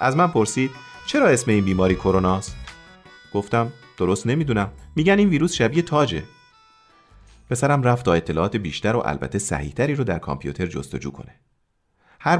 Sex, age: male, 40-59